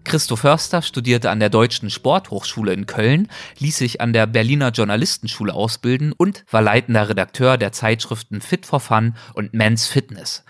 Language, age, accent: German, 30-49, German